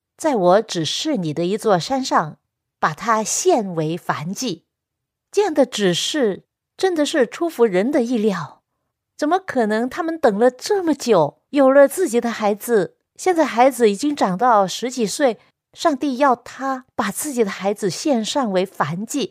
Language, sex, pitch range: Chinese, female, 190-275 Hz